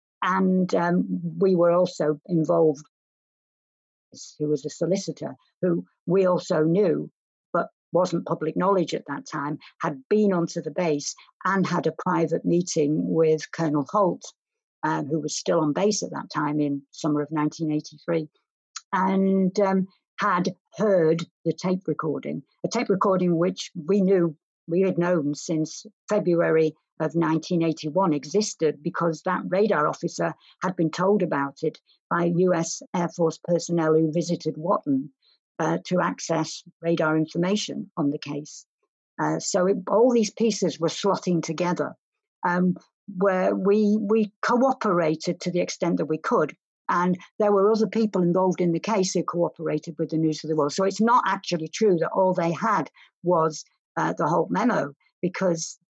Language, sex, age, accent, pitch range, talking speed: English, female, 60-79, British, 160-195 Hz, 155 wpm